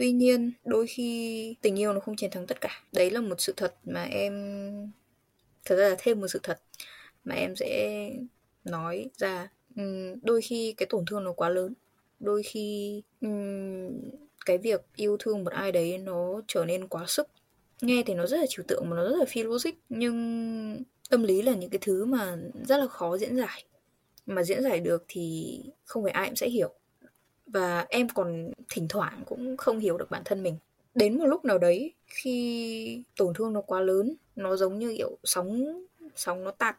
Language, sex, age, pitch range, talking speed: Vietnamese, female, 10-29, 185-245 Hz, 195 wpm